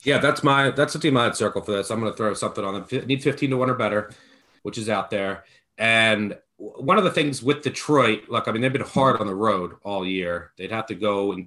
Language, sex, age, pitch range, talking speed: English, male, 30-49, 100-130 Hz, 260 wpm